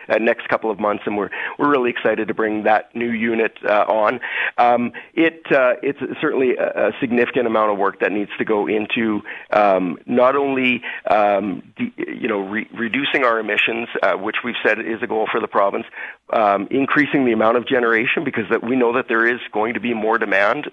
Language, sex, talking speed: English, male, 210 wpm